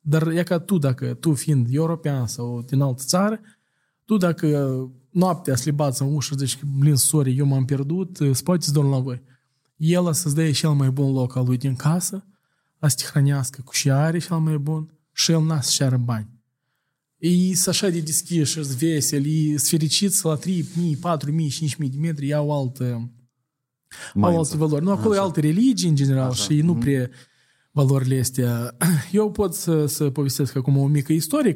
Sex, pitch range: male, 130-165 Hz